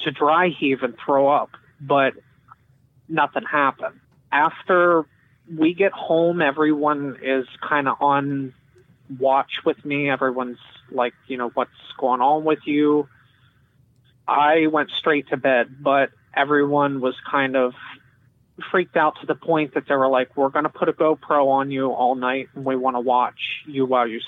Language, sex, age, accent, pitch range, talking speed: English, male, 30-49, American, 130-150 Hz, 165 wpm